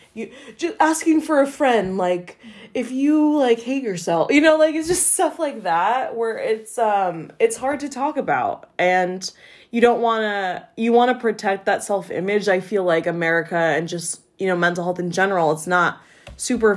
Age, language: 20-39, English